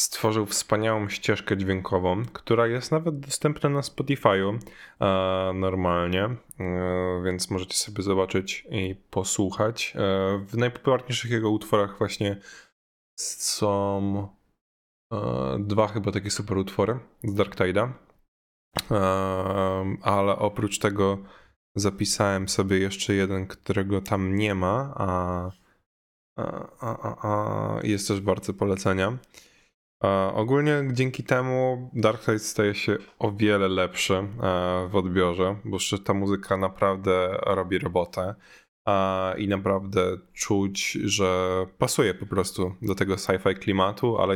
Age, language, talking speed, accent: 20-39, Polish, 105 wpm, native